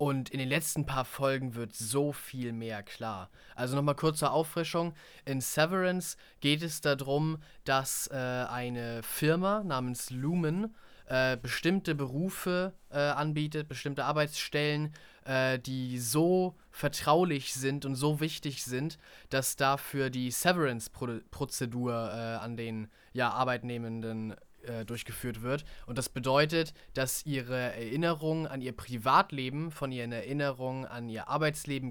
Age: 20-39